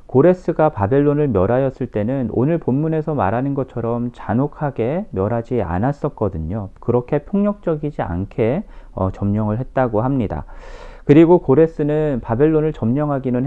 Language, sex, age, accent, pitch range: Korean, male, 40-59, native, 105-150 Hz